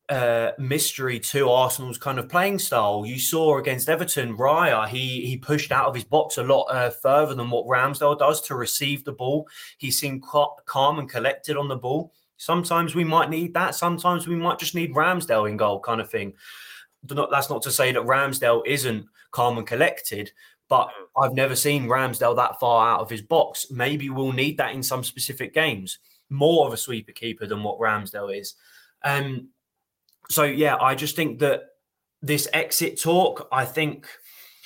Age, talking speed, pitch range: 20-39, 185 wpm, 125-155 Hz